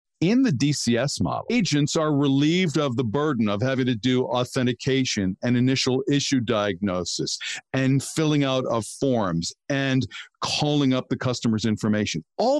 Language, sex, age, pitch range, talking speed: English, male, 50-69, 120-145 Hz, 150 wpm